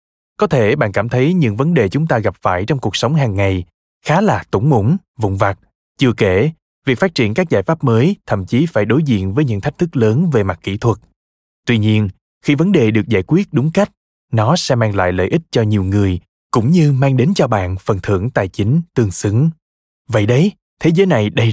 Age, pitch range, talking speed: 20-39, 100-155 Hz, 230 wpm